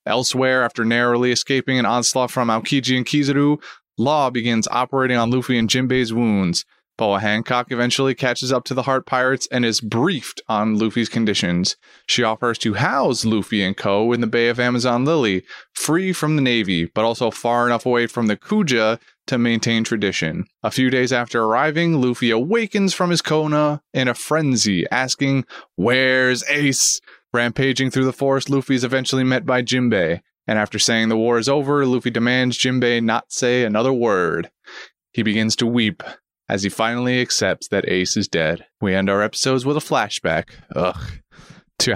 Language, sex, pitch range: English, male, 110-130 Hz